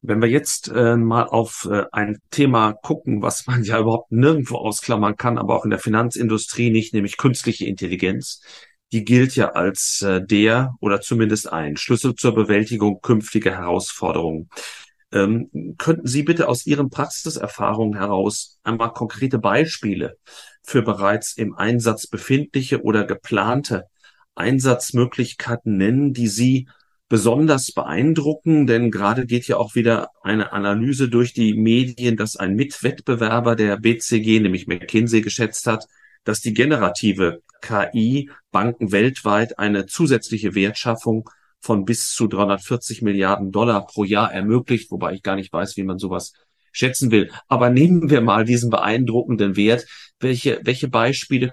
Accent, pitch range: German, 105-125 Hz